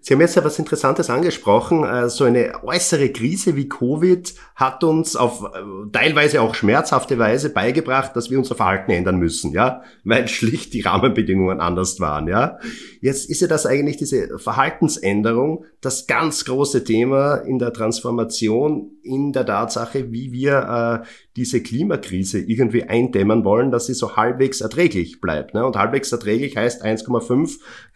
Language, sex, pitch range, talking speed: German, male, 115-140 Hz, 150 wpm